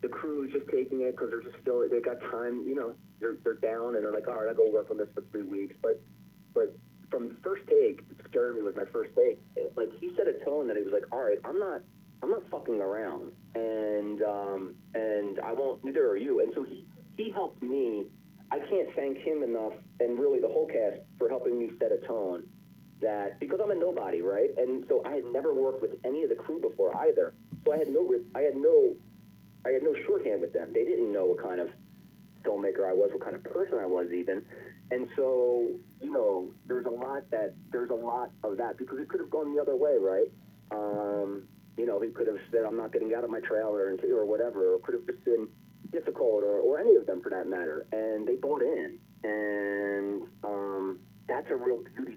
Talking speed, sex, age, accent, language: 230 wpm, male, 30-49, American, English